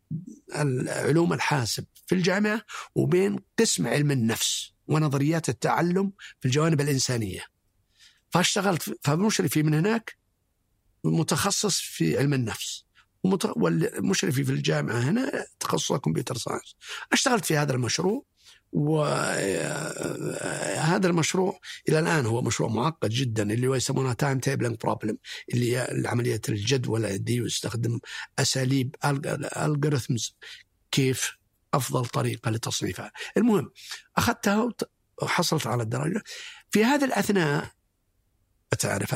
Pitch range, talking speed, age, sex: 120-165 Hz, 105 wpm, 50-69, male